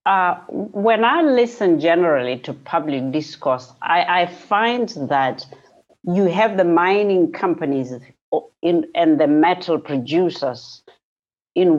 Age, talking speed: 60-79, 115 wpm